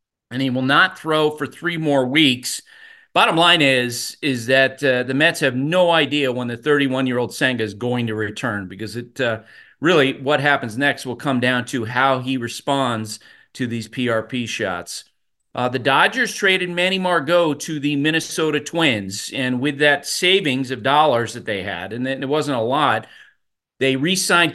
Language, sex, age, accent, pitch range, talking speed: English, male, 40-59, American, 125-160 Hz, 175 wpm